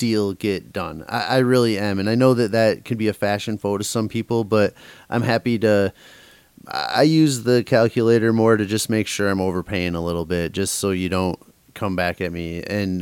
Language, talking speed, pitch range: English, 215 wpm, 95-110 Hz